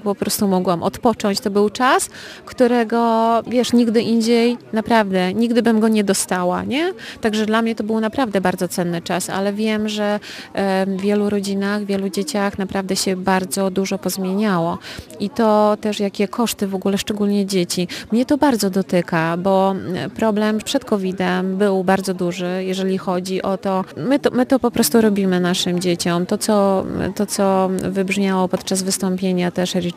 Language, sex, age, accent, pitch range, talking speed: Polish, female, 30-49, native, 185-210 Hz, 160 wpm